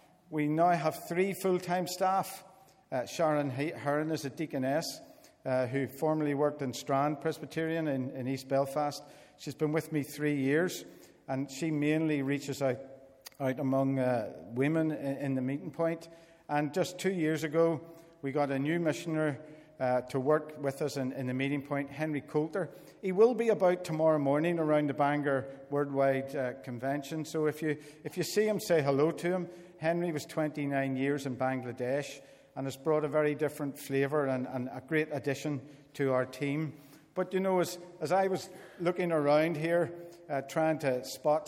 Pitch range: 140-165 Hz